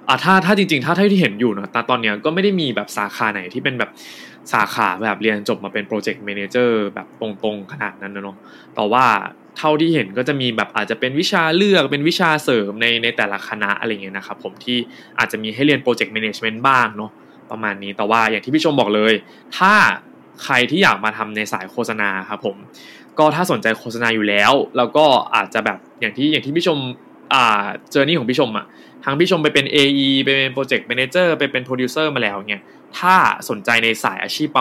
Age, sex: 20-39, male